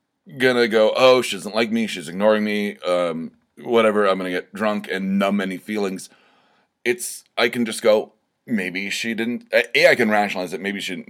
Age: 30-49